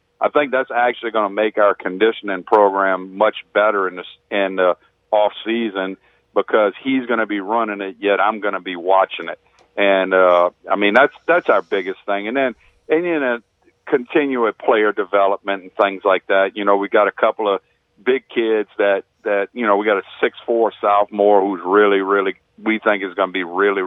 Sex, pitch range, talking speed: male, 100-120 Hz, 205 wpm